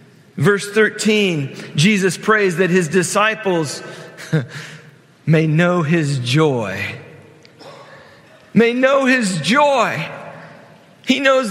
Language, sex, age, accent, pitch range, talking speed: English, male, 40-59, American, 155-210 Hz, 90 wpm